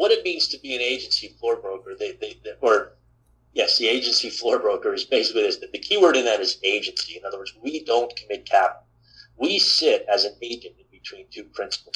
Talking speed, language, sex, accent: 220 wpm, English, male, American